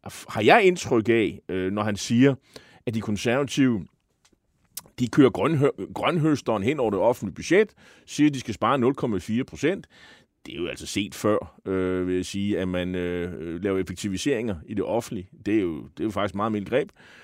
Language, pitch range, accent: Danish, 110-155 Hz, native